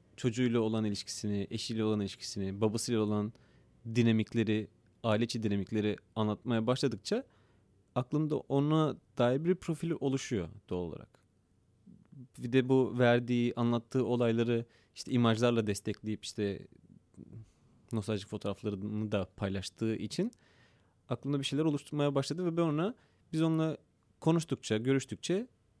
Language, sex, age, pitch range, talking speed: Turkish, male, 30-49, 105-130 Hz, 110 wpm